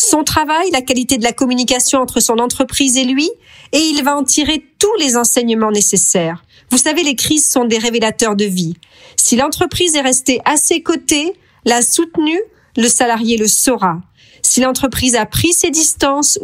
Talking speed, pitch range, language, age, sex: 180 wpm, 225-285 Hz, French, 40-59, female